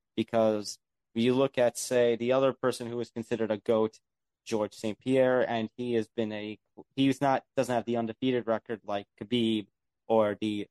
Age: 20-39